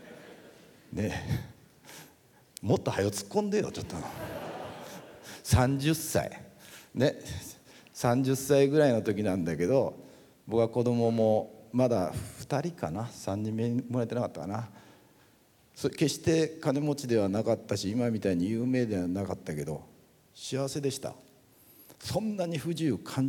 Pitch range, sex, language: 105-145 Hz, male, Japanese